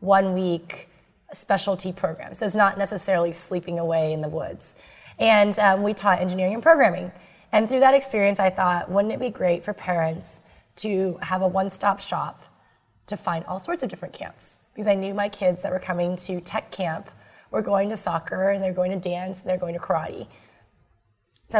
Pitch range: 175-205 Hz